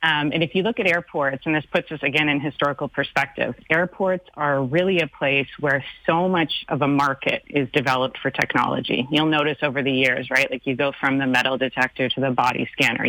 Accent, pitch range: American, 135-170 Hz